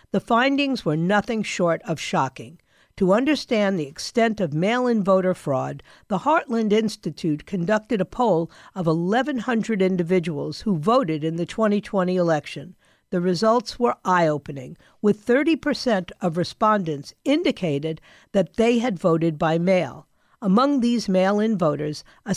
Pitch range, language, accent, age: 170-240 Hz, English, American, 50-69